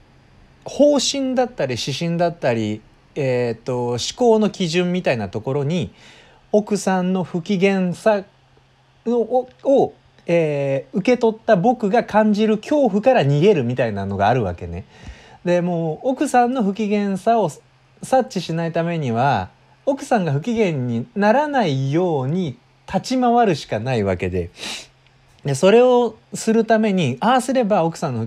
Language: Japanese